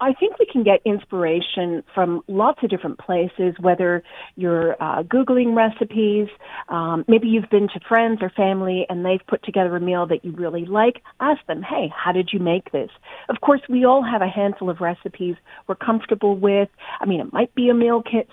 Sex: female